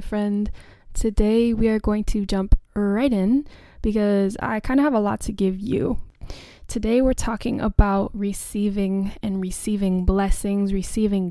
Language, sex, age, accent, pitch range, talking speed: English, female, 10-29, American, 195-225 Hz, 150 wpm